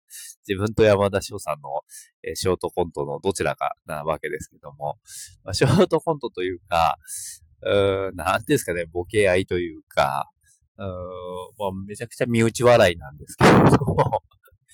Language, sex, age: Japanese, male, 20-39